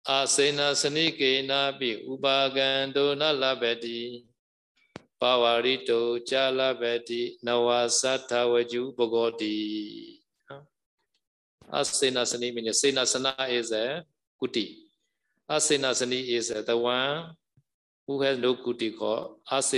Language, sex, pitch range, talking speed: Vietnamese, male, 115-135 Hz, 80 wpm